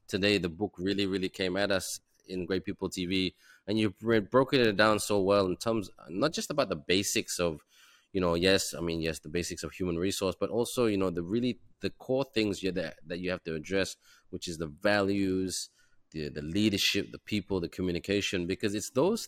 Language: English